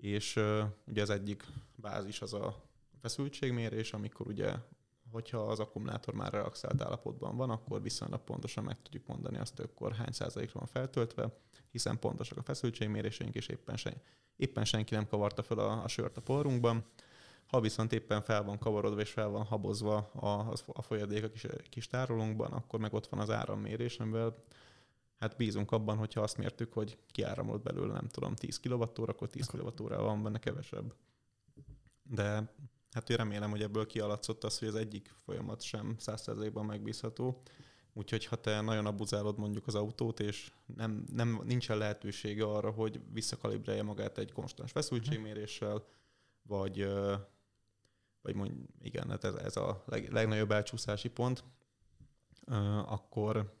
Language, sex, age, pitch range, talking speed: Hungarian, male, 20-39, 105-125 Hz, 160 wpm